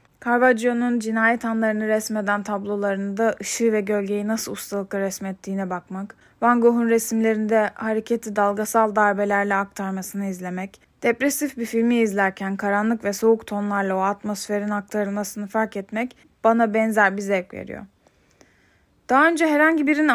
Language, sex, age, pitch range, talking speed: Turkish, female, 10-29, 200-240 Hz, 125 wpm